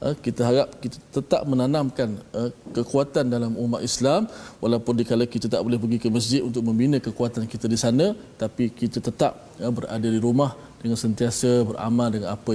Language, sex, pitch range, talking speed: Malayalam, male, 110-125 Hz, 165 wpm